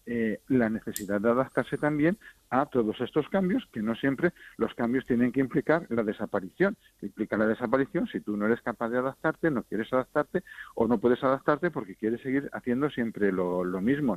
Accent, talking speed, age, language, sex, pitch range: Spanish, 190 wpm, 50-69, Spanish, male, 110-135 Hz